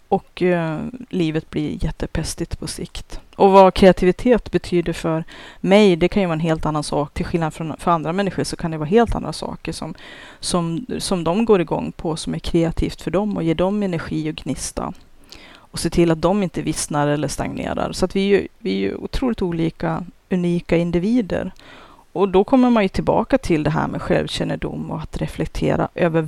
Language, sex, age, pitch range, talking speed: Swedish, female, 30-49, 155-190 Hz, 200 wpm